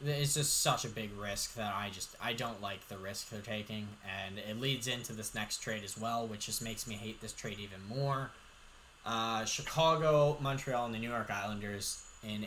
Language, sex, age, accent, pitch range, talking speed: English, male, 10-29, American, 100-125 Hz, 205 wpm